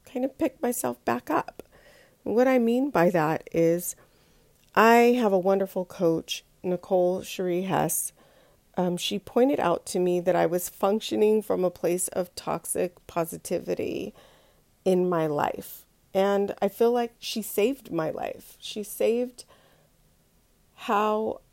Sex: female